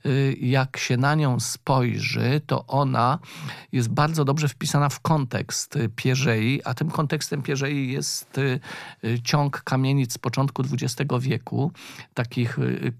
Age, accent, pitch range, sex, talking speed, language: 40-59, native, 125-145 Hz, male, 120 wpm, Polish